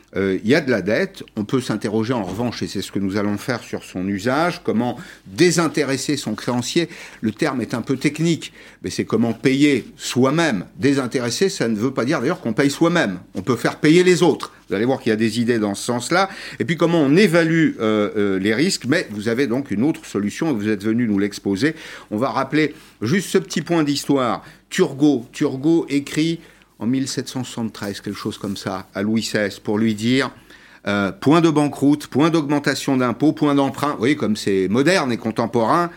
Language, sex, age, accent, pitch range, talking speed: French, male, 50-69, French, 110-155 Hz, 205 wpm